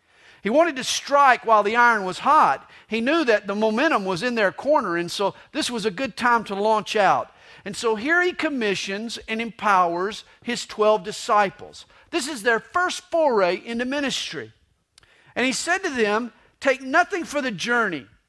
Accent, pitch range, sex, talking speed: American, 205-290 Hz, male, 180 wpm